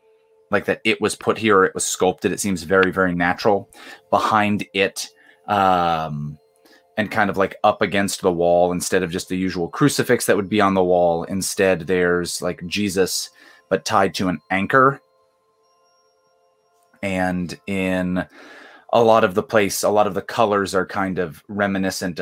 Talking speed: 165 wpm